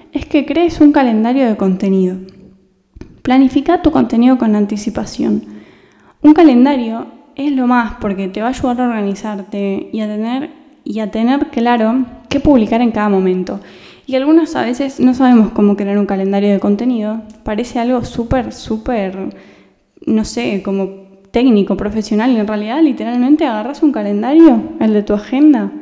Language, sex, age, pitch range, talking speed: Spanish, female, 10-29, 215-290 Hz, 150 wpm